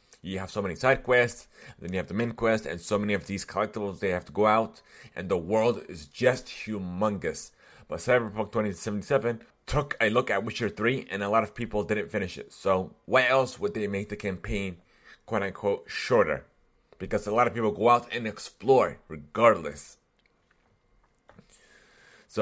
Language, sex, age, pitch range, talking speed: English, male, 30-49, 100-120 Hz, 180 wpm